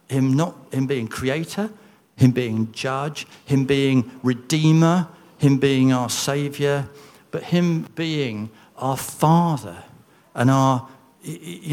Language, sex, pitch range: English, male, 115-150 Hz